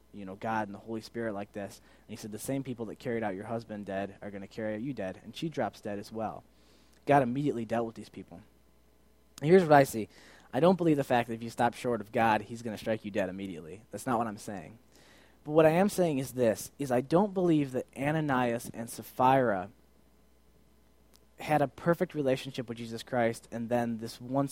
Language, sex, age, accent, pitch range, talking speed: English, male, 10-29, American, 105-135 Hz, 230 wpm